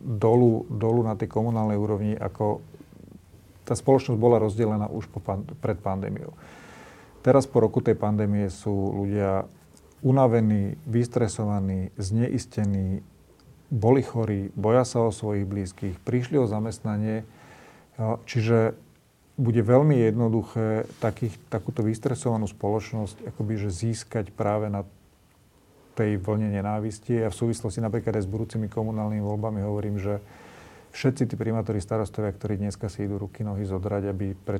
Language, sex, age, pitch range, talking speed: Slovak, male, 40-59, 100-115 Hz, 130 wpm